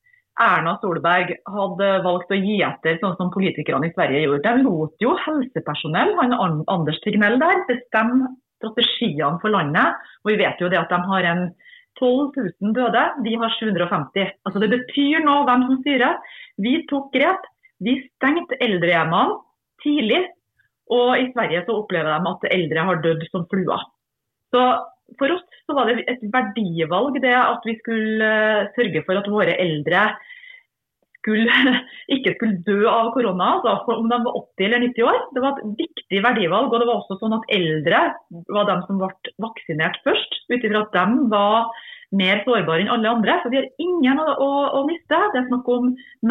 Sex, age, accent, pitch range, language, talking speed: female, 30-49, Swedish, 190-255 Hz, English, 180 wpm